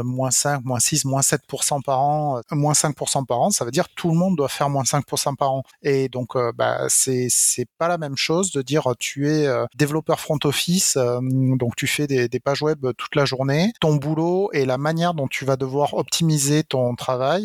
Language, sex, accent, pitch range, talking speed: French, male, French, 130-155 Hz, 225 wpm